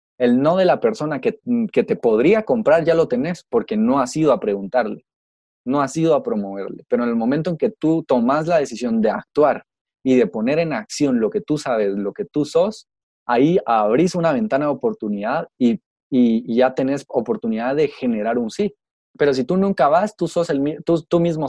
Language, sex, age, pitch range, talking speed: Spanish, male, 20-39, 130-175 Hz, 210 wpm